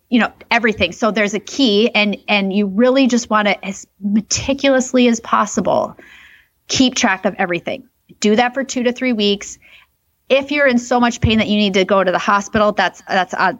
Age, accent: 30-49, American